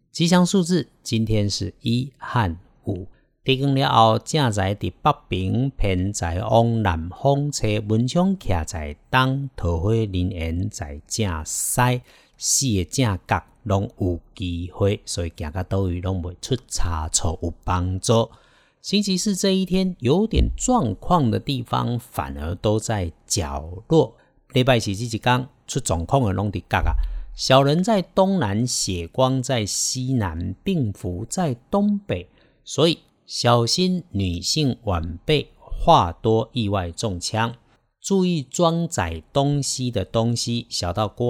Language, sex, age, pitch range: Chinese, male, 50-69, 90-130 Hz